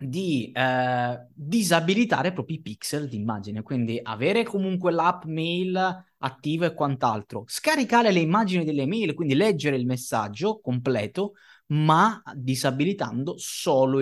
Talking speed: 125 wpm